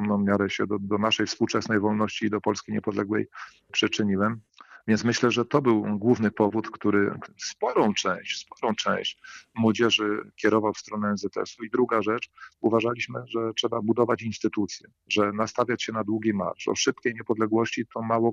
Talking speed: 165 wpm